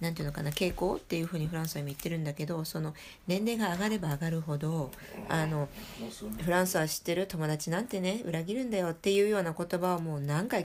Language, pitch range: Japanese, 165-220 Hz